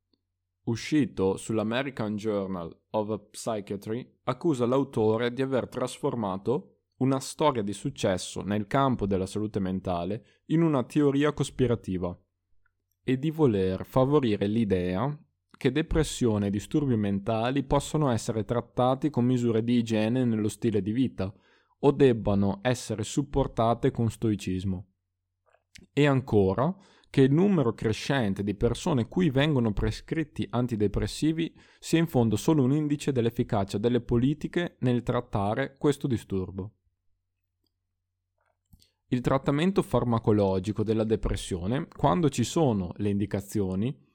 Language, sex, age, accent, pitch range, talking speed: Italian, male, 20-39, native, 100-130 Hz, 115 wpm